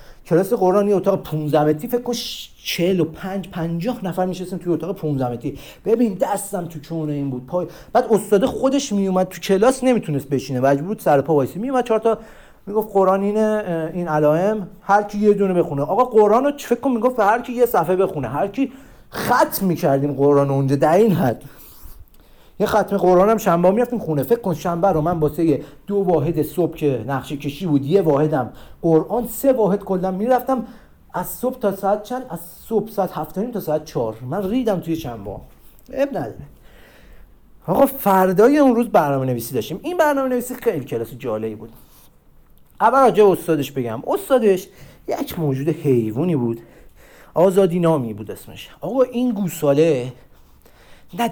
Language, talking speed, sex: Persian, 170 wpm, male